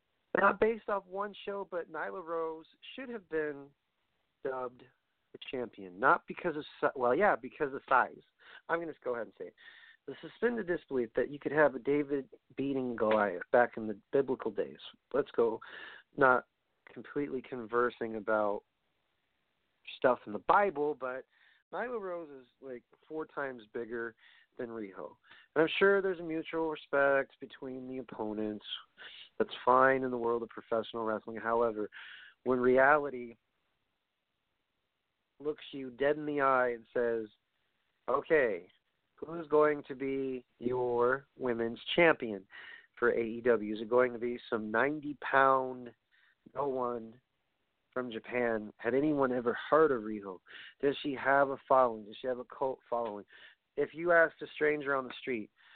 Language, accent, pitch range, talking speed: English, American, 120-155 Hz, 155 wpm